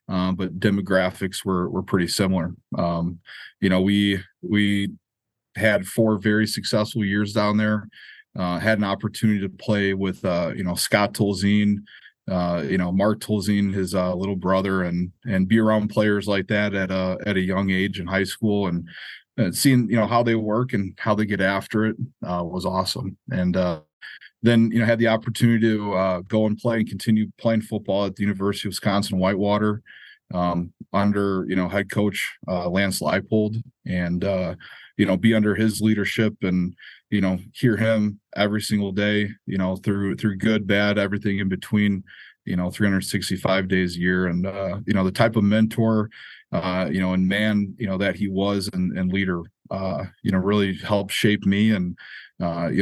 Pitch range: 95-105 Hz